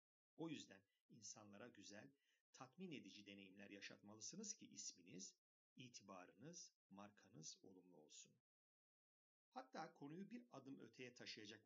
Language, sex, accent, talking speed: Turkish, male, native, 105 wpm